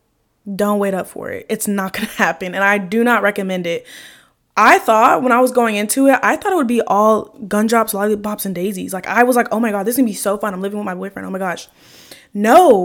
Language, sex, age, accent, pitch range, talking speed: English, female, 10-29, American, 195-245 Hz, 260 wpm